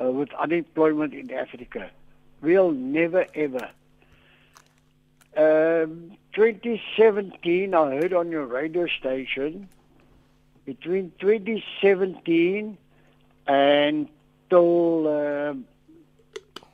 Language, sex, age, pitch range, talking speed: English, male, 60-79, 155-205 Hz, 70 wpm